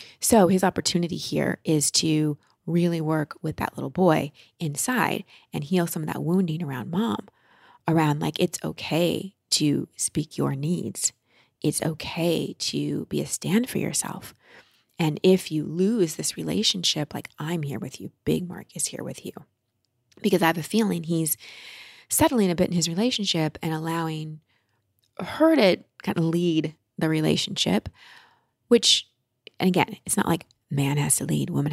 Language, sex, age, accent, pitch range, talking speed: English, female, 30-49, American, 150-190 Hz, 165 wpm